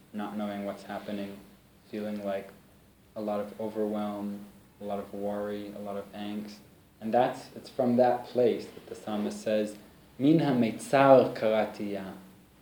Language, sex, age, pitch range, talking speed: English, male, 20-39, 105-140 Hz, 145 wpm